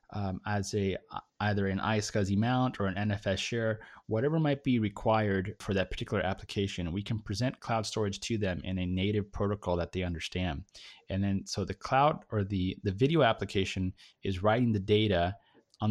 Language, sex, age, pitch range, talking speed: English, male, 20-39, 90-105 Hz, 180 wpm